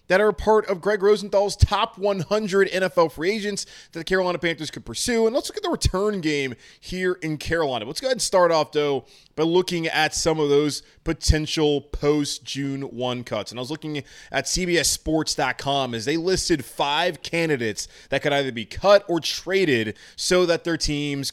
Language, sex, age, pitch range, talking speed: English, male, 20-39, 120-155 Hz, 185 wpm